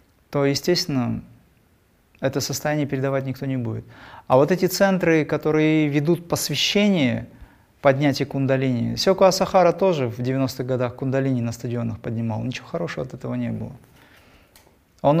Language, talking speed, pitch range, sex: Russian, 135 wpm, 120-145 Hz, male